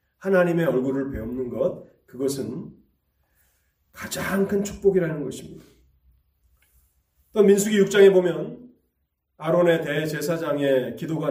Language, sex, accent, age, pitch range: Korean, male, native, 30-49, 120-185 Hz